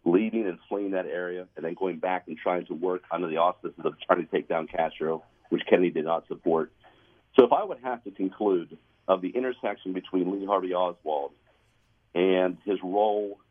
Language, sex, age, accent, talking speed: English, male, 50-69, American, 195 wpm